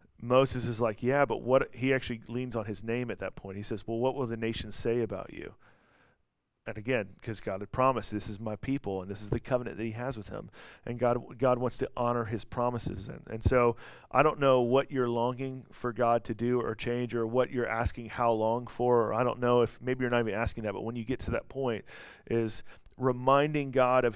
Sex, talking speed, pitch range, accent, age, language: male, 240 wpm, 115-130 Hz, American, 40-59, English